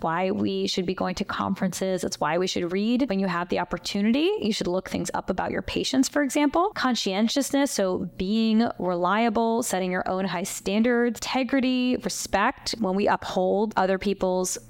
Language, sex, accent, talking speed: English, female, American, 175 wpm